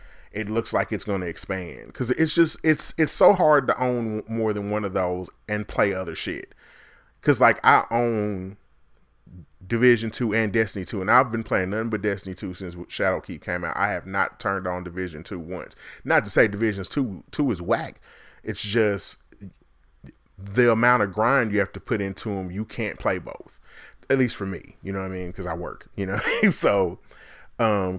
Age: 30-49